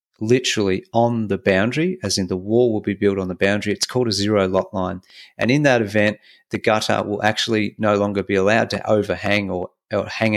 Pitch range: 95-105 Hz